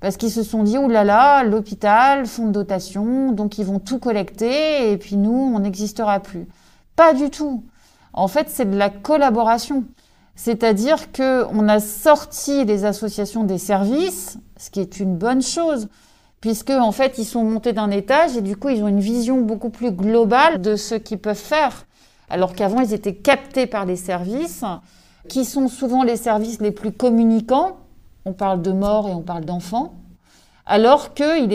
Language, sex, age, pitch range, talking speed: French, female, 40-59, 205-260 Hz, 185 wpm